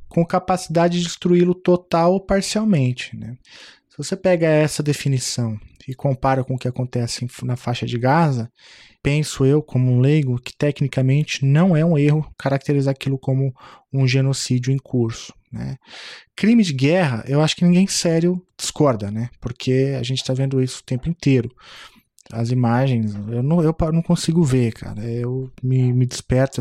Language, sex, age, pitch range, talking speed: Portuguese, male, 20-39, 125-155 Hz, 165 wpm